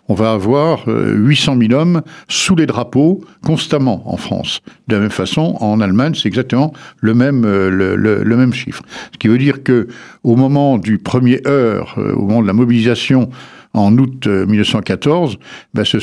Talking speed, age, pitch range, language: 170 wpm, 60-79, 105-140 Hz, French